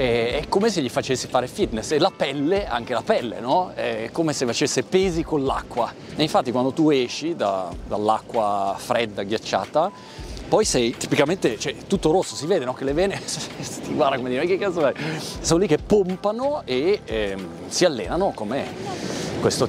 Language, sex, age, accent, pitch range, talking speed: Italian, male, 30-49, native, 130-195 Hz, 180 wpm